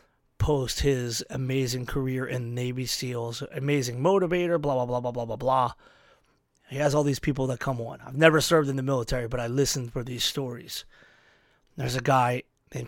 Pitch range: 125-145 Hz